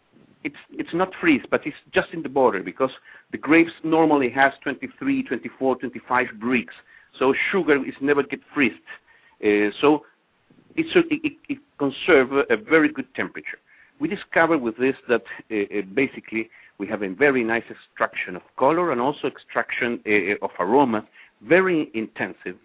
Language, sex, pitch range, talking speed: English, male, 115-160 Hz, 155 wpm